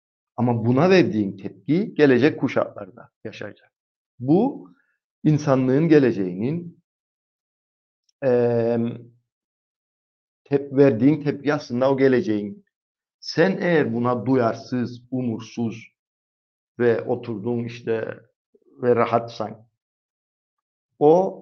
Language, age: Turkish, 50-69